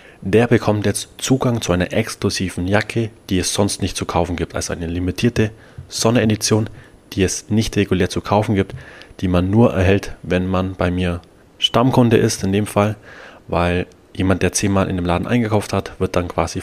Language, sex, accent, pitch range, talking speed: German, male, German, 90-110 Hz, 185 wpm